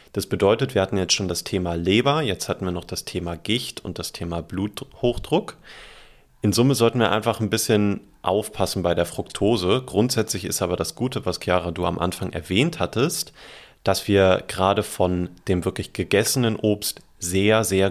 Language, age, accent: German, 30-49, German